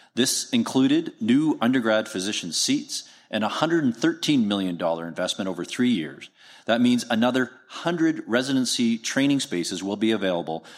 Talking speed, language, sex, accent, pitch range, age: 135 wpm, English, male, American, 100-160 Hz, 40-59